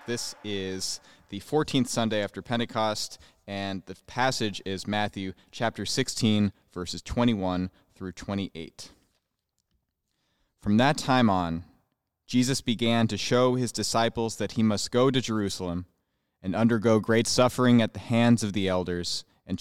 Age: 20-39